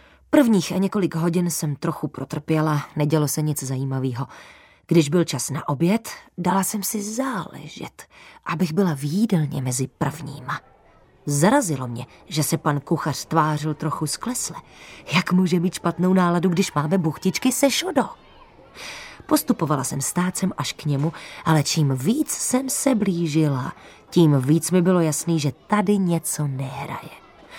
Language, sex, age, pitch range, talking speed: Czech, female, 20-39, 150-220 Hz, 145 wpm